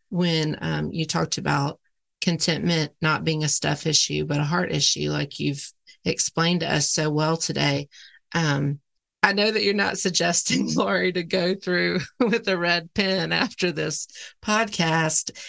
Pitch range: 155-185 Hz